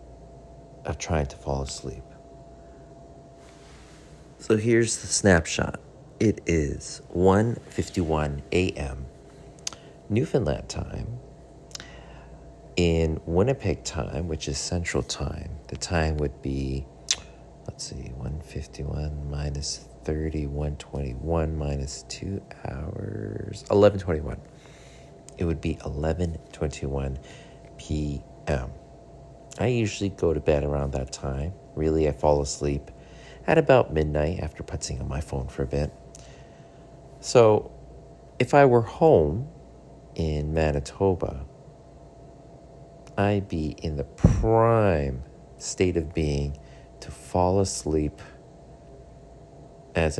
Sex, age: male, 40-59